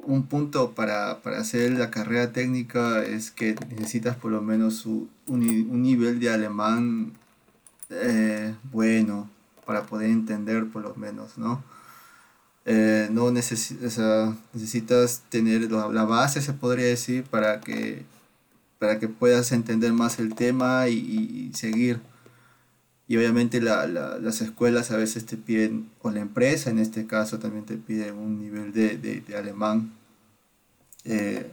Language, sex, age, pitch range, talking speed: Spanish, male, 30-49, 110-125 Hz, 140 wpm